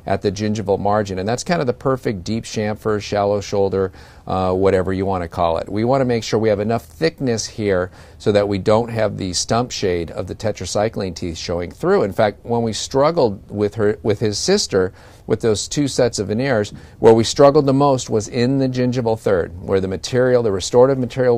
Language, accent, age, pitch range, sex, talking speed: English, American, 50-69, 95-125 Hz, male, 215 wpm